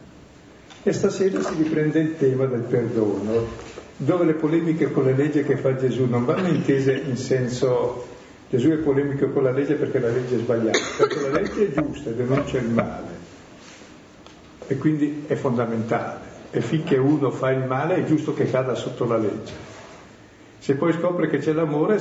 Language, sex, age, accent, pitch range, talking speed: Italian, male, 60-79, native, 125-155 Hz, 180 wpm